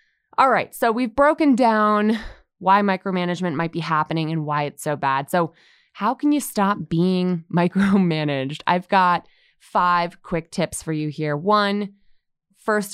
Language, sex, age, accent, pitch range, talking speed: English, female, 20-39, American, 170-240 Hz, 155 wpm